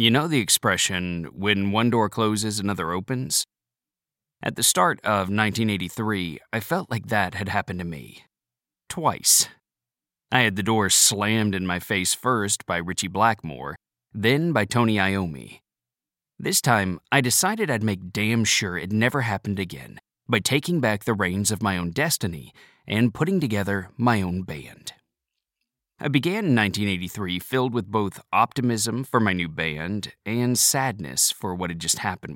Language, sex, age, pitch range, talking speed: English, male, 30-49, 90-120 Hz, 160 wpm